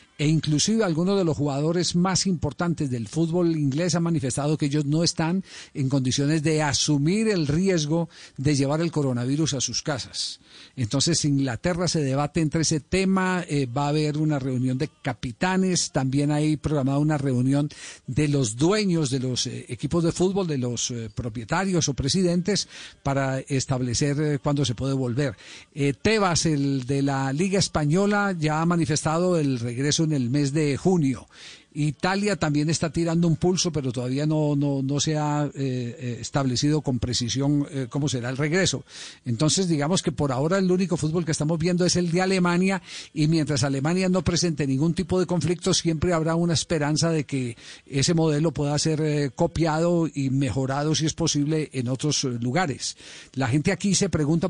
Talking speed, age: 175 wpm, 50-69